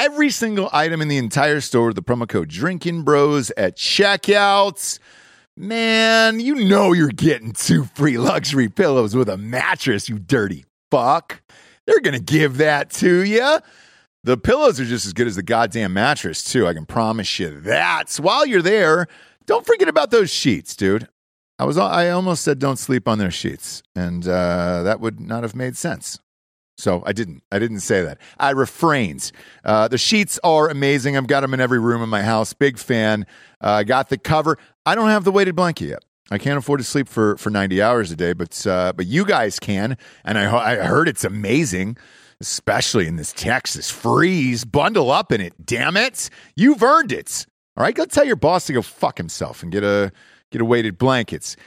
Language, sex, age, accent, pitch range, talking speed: English, male, 40-59, American, 110-175 Hz, 195 wpm